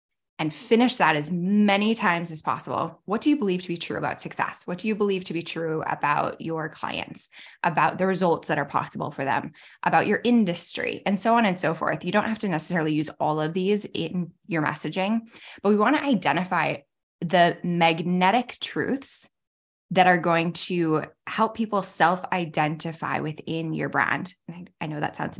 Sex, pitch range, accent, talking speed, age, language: female, 165-215 Hz, American, 185 wpm, 10-29, English